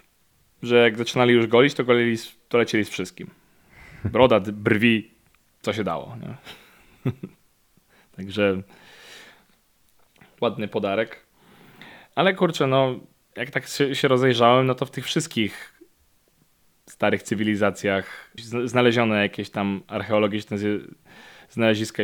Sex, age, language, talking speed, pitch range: male, 20-39, Polish, 110 wpm, 100-120 Hz